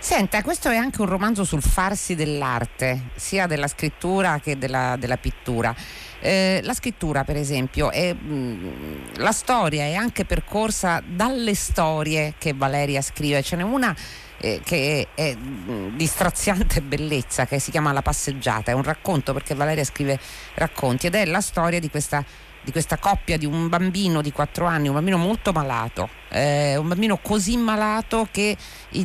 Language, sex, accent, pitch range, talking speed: Italian, female, native, 140-190 Hz, 165 wpm